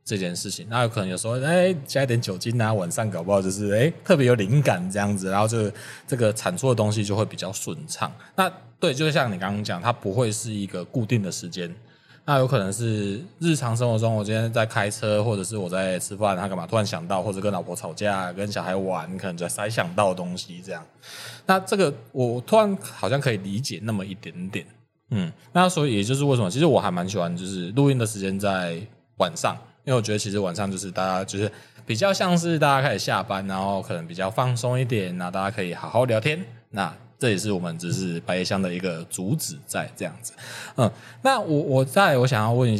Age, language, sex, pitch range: 20-39, Chinese, male, 100-135 Hz